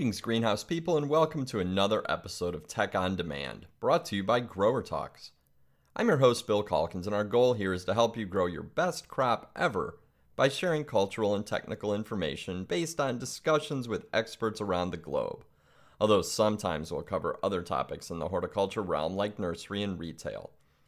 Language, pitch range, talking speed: English, 90-130 Hz, 185 wpm